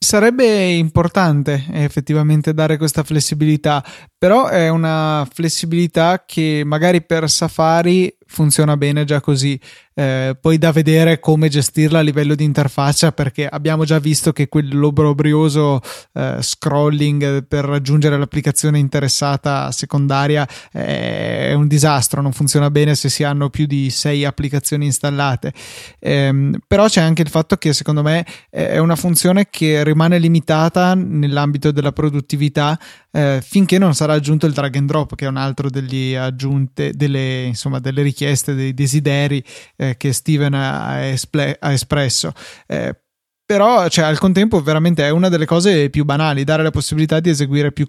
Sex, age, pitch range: male, 20-39, 140-160 Hz